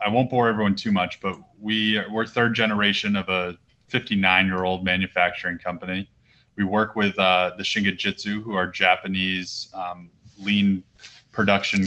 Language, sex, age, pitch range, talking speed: English, male, 20-39, 95-120 Hz, 155 wpm